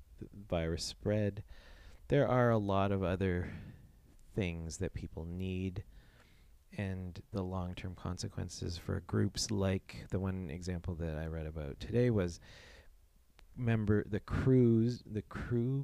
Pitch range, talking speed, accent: 80-105 Hz, 130 wpm, American